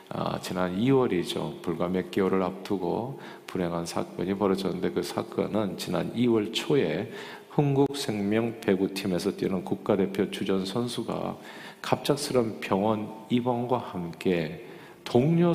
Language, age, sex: Korean, 50-69, male